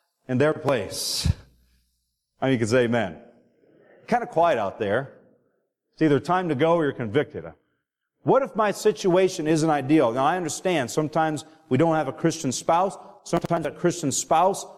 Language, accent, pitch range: English, American, 145-195 Hz